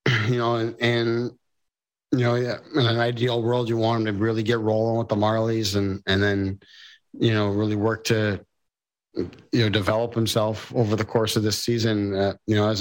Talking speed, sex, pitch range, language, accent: 195 wpm, male, 95-115 Hz, English, American